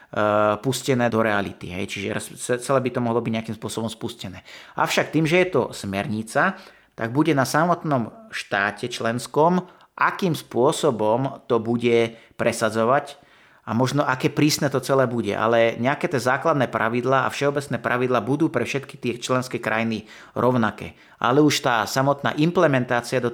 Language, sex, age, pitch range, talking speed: Slovak, male, 30-49, 115-135 Hz, 150 wpm